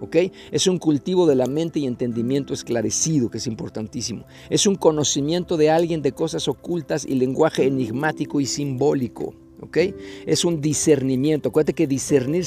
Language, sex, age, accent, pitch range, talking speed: Spanish, male, 50-69, Mexican, 130-175 Hz, 155 wpm